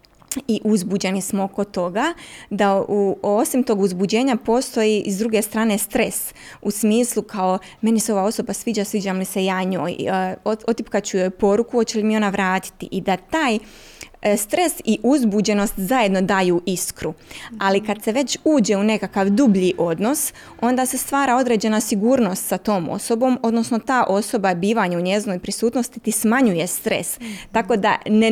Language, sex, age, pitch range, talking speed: Croatian, female, 20-39, 185-225 Hz, 160 wpm